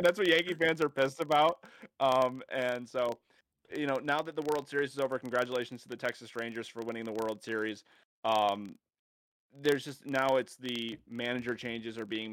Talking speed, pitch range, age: 190 wpm, 105-125 Hz, 30-49